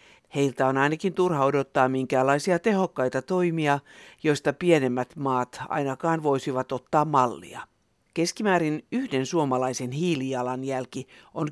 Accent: native